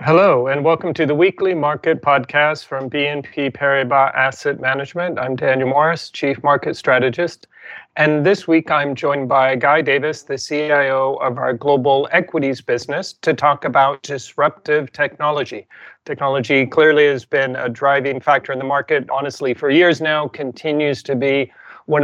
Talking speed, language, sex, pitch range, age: 155 wpm, English, male, 135-155 Hz, 30-49